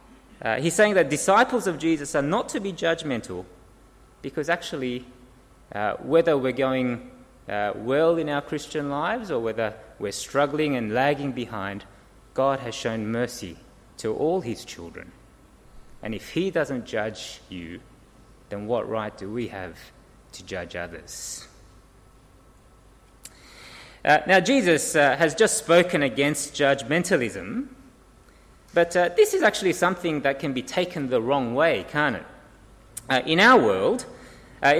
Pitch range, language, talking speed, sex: 125-185 Hz, English, 145 wpm, male